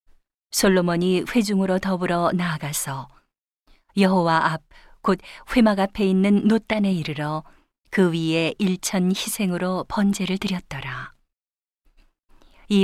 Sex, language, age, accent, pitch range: female, Korean, 40-59, native, 165-195 Hz